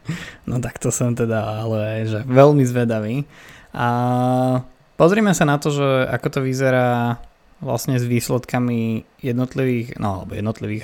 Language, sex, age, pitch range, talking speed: Slovak, male, 20-39, 115-125 Hz, 135 wpm